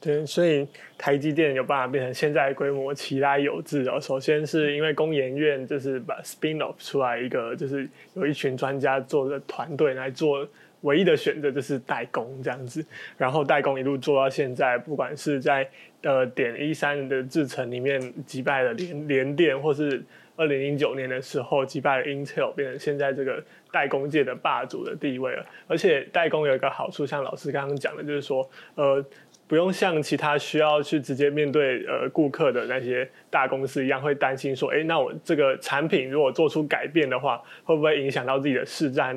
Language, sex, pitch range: Chinese, male, 135-150 Hz